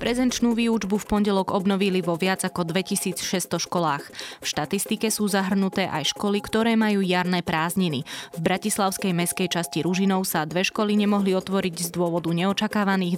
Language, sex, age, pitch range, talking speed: Slovak, female, 20-39, 170-200 Hz, 150 wpm